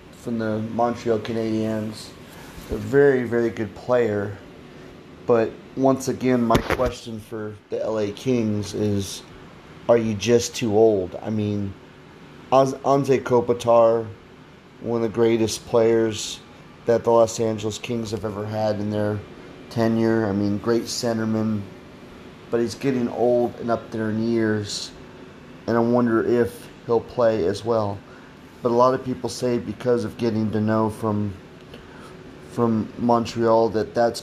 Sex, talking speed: male, 140 wpm